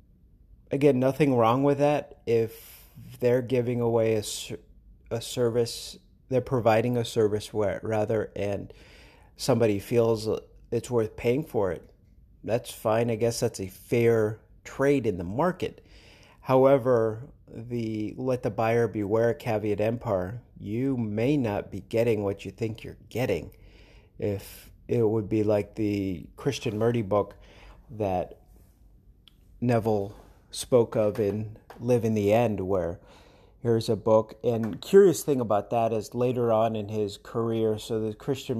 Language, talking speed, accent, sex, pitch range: English, 140 wpm, American, male, 105-120 Hz